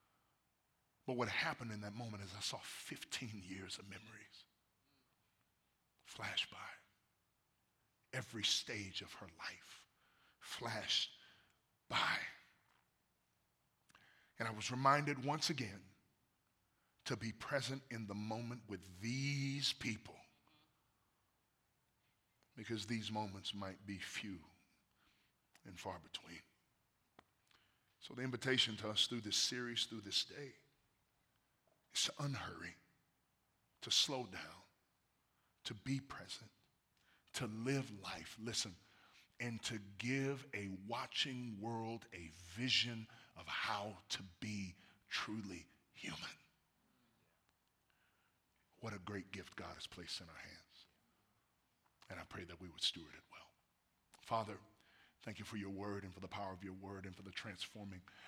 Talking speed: 125 wpm